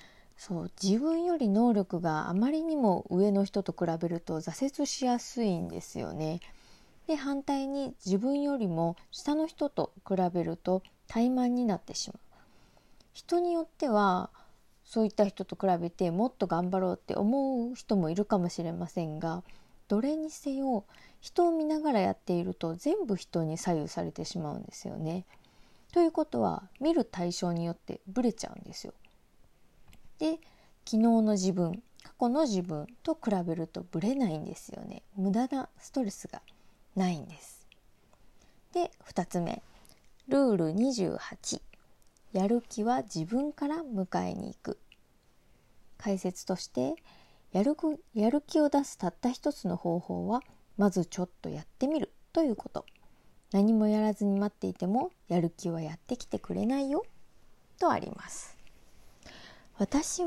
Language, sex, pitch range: Japanese, female, 180-275 Hz